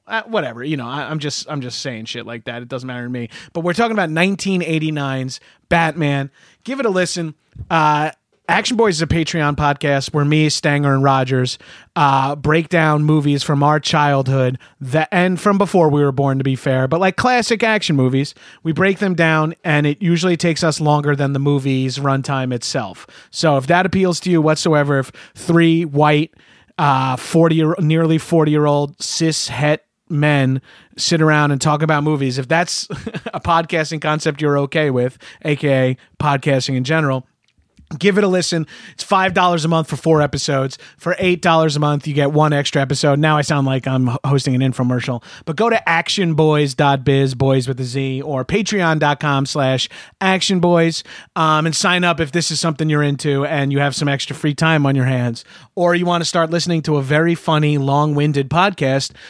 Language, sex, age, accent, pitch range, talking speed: English, male, 30-49, American, 140-170 Hz, 185 wpm